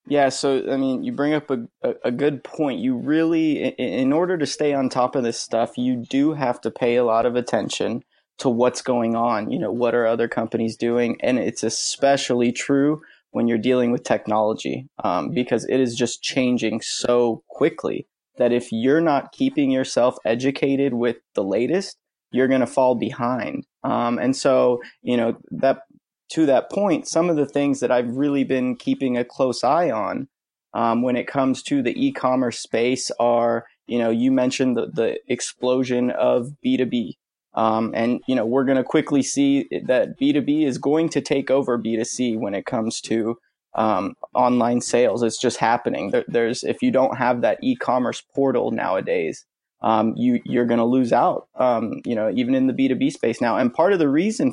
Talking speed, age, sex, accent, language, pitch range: 190 wpm, 20-39, male, American, English, 120-150 Hz